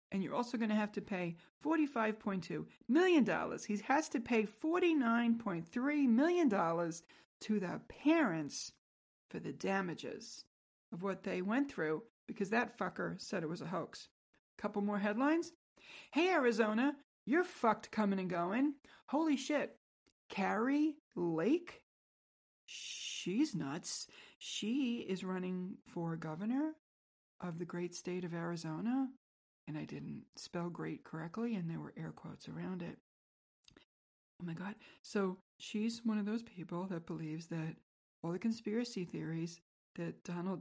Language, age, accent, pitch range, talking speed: English, 40-59, American, 170-240 Hz, 135 wpm